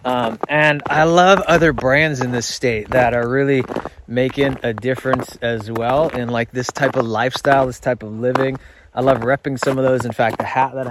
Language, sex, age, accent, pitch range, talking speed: English, male, 20-39, American, 120-140 Hz, 210 wpm